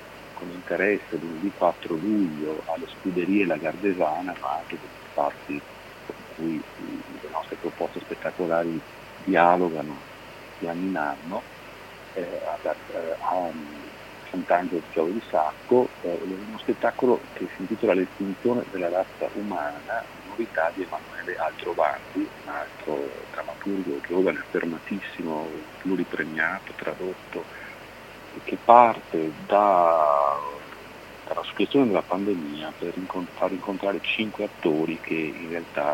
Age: 50-69